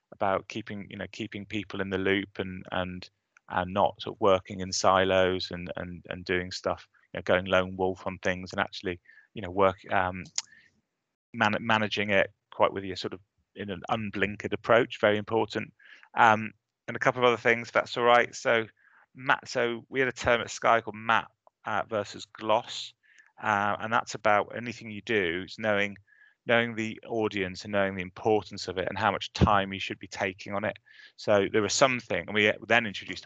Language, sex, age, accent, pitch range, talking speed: English, male, 30-49, British, 95-110 Hz, 190 wpm